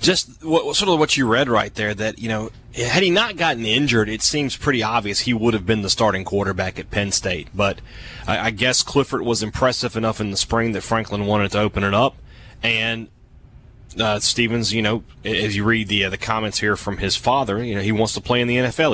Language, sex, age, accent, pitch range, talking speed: English, male, 30-49, American, 105-120 Hz, 225 wpm